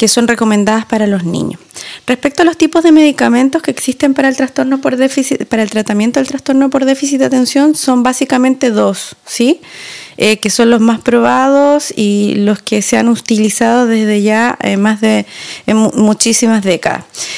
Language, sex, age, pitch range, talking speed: Spanish, female, 20-39, 220-280 Hz, 185 wpm